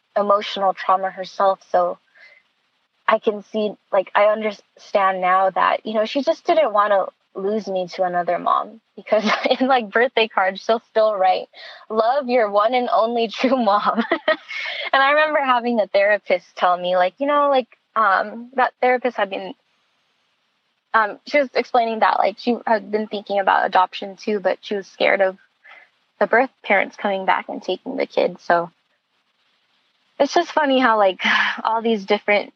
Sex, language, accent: female, English, American